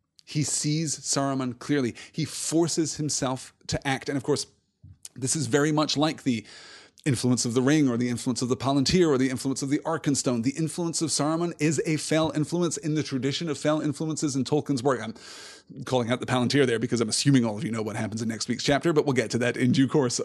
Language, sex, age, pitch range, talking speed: English, male, 30-49, 130-170 Hz, 230 wpm